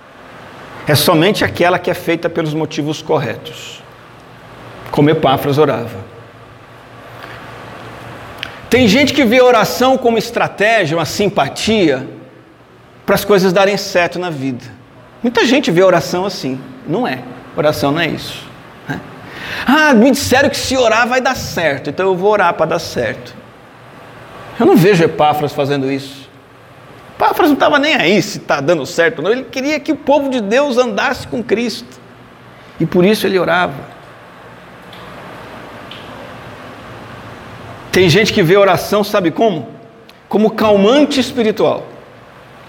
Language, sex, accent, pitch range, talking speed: Portuguese, male, Brazilian, 145-220 Hz, 140 wpm